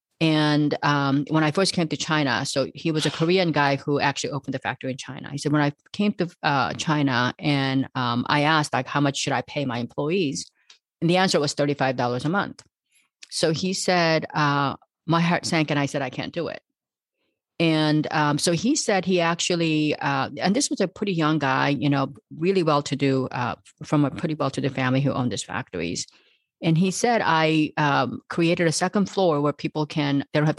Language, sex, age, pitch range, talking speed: English, female, 40-59, 140-170 Hz, 210 wpm